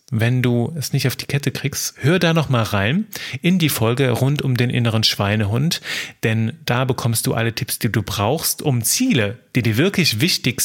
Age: 30-49